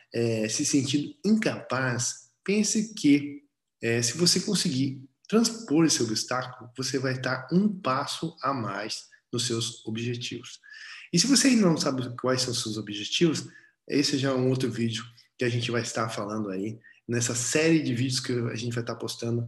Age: 20-39